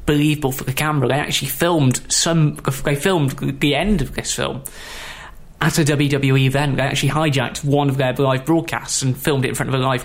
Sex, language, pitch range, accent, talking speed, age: male, English, 130-155 Hz, British, 205 wpm, 20-39